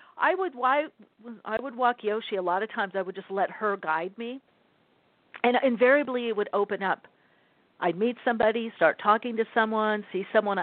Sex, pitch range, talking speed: female, 180-230 Hz, 185 wpm